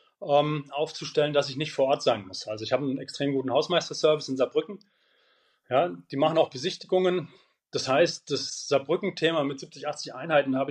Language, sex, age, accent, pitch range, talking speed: German, male, 30-49, German, 130-155 Hz, 175 wpm